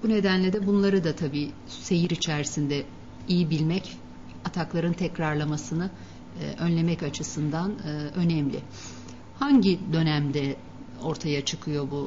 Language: Turkish